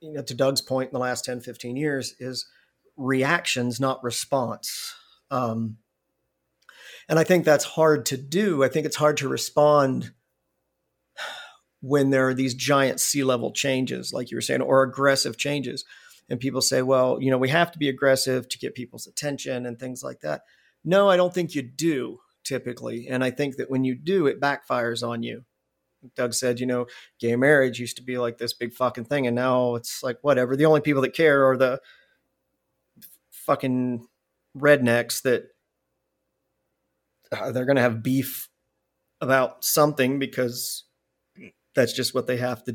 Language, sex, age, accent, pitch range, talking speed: English, male, 40-59, American, 125-140 Hz, 175 wpm